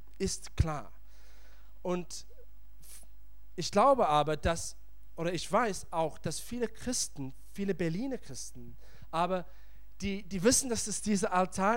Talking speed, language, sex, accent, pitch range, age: 125 wpm, German, male, German, 160-225 Hz, 40-59